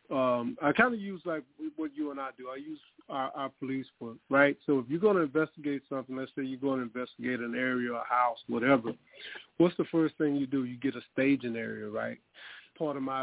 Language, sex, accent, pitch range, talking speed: English, male, American, 125-150 Hz, 230 wpm